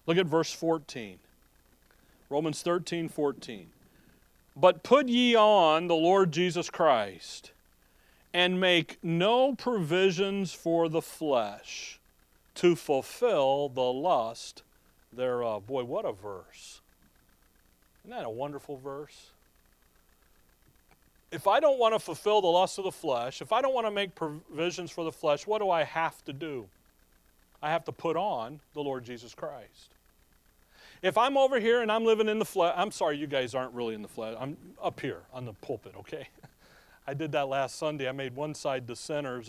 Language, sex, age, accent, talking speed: English, male, 40-59, American, 165 wpm